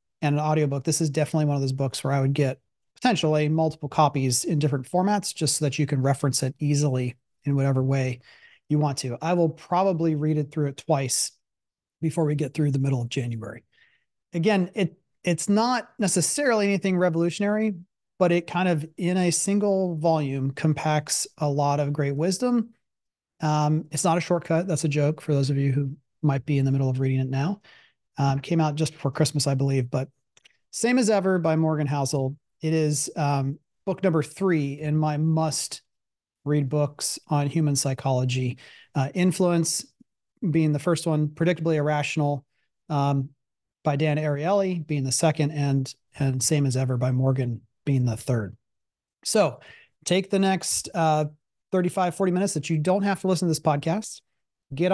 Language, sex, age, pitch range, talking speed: English, male, 30-49, 140-175 Hz, 180 wpm